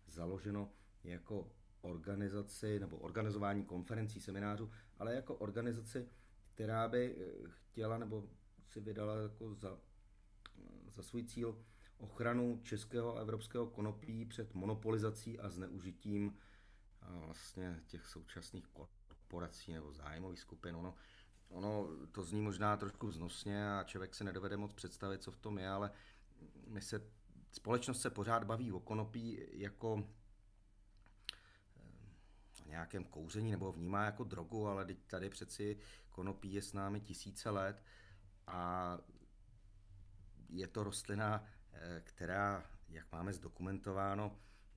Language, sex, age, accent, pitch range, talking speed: Czech, male, 40-59, native, 95-105 Hz, 120 wpm